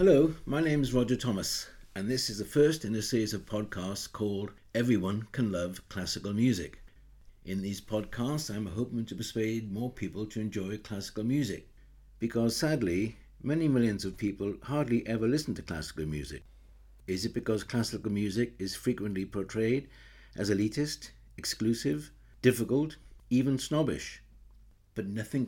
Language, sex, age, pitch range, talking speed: English, male, 60-79, 85-115 Hz, 150 wpm